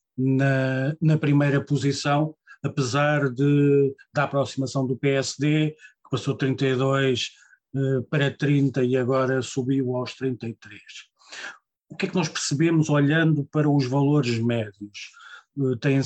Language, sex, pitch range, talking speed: Portuguese, male, 130-150 Hz, 115 wpm